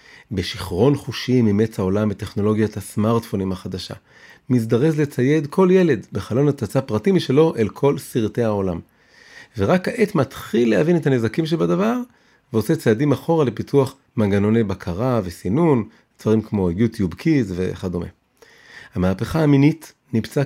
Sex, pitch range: male, 110-145 Hz